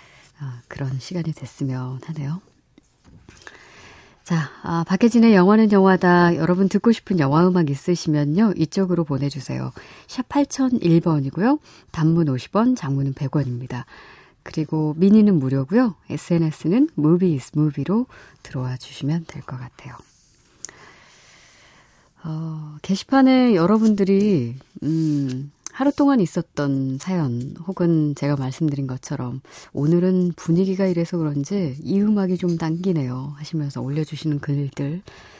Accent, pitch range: native, 140-190 Hz